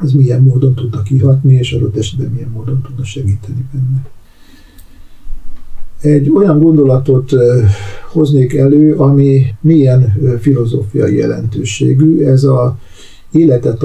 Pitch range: 105-135 Hz